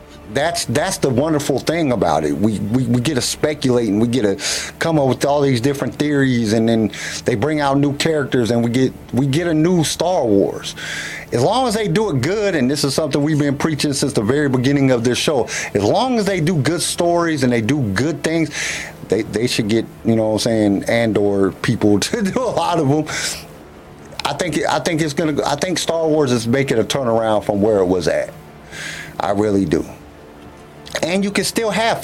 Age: 50-69